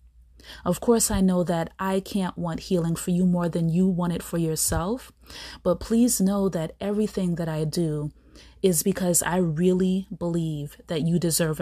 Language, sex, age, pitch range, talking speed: English, female, 30-49, 160-185 Hz, 175 wpm